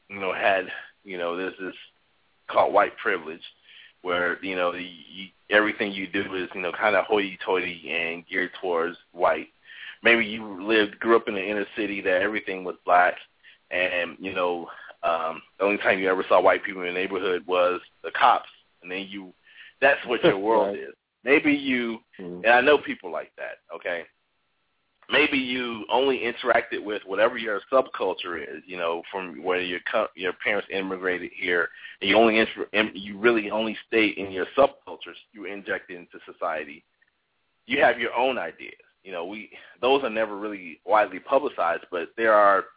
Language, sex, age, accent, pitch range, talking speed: English, male, 30-49, American, 90-115 Hz, 180 wpm